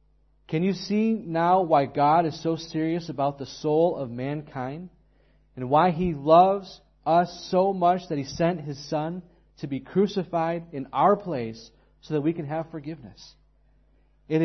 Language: English